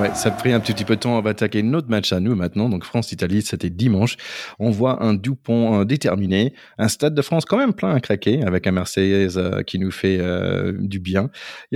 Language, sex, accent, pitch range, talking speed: French, male, French, 100-140 Hz, 235 wpm